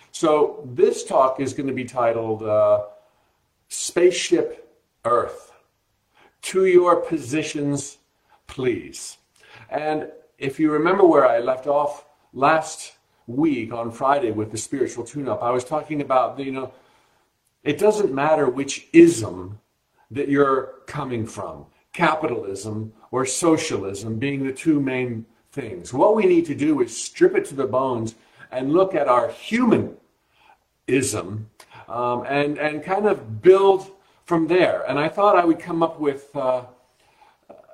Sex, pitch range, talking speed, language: male, 120-165 Hz, 140 wpm, English